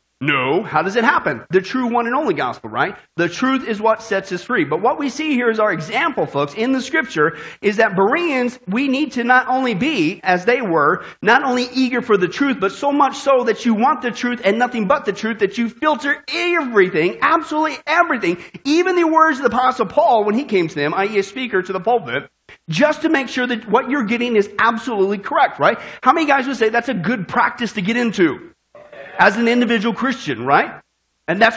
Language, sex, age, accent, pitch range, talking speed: English, male, 40-59, American, 200-275 Hz, 225 wpm